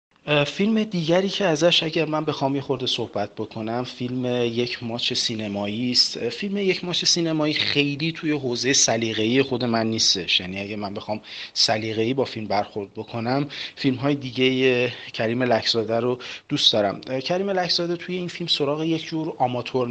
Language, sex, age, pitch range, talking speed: Persian, male, 30-49, 115-145 Hz, 155 wpm